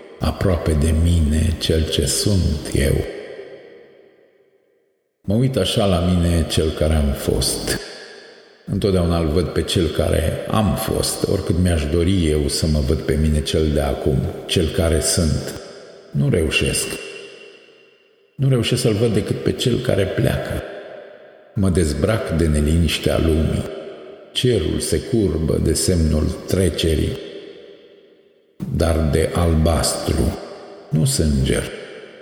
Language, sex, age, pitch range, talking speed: Romanian, male, 50-69, 80-110 Hz, 125 wpm